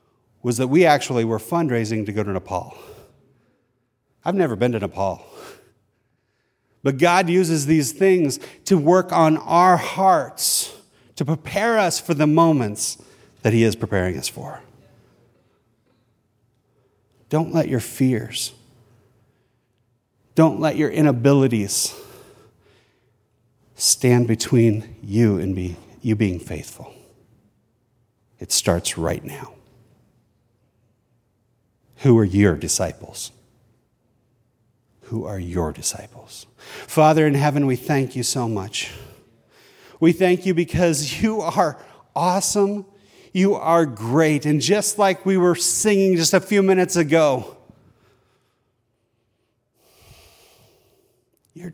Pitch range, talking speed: 115-160 Hz, 110 wpm